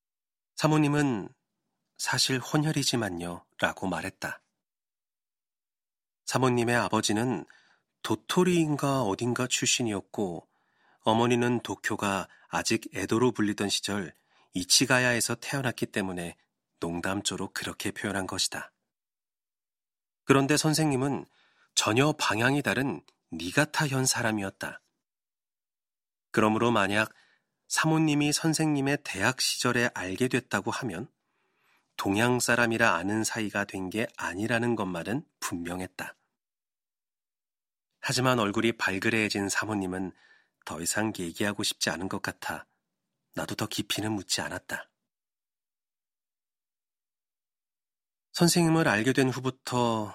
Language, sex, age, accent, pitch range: Korean, male, 40-59, native, 100-130 Hz